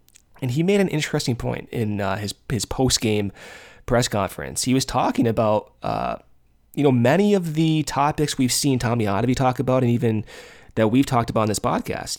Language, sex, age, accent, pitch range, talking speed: English, male, 20-39, American, 105-140 Hz, 195 wpm